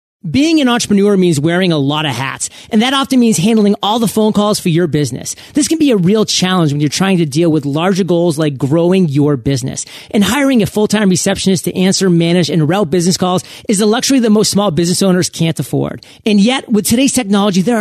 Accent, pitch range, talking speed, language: American, 170-215 Hz, 225 wpm, English